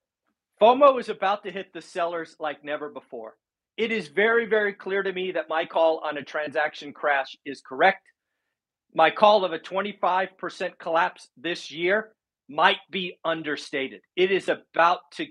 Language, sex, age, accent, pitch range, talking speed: English, male, 40-59, American, 160-220 Hz, 160 wpm